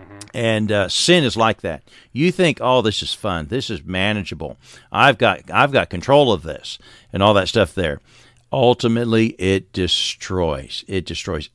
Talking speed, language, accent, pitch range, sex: 165 wpm, English, American, 90-110 Hz, male